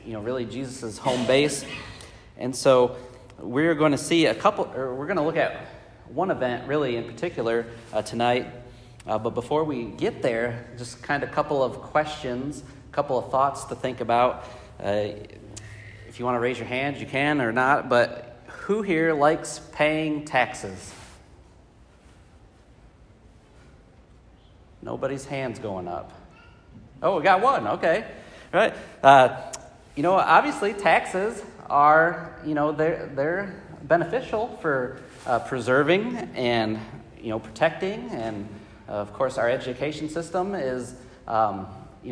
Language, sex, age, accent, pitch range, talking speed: English, male, 40-59, American, 115-145 Hz, 150 wpm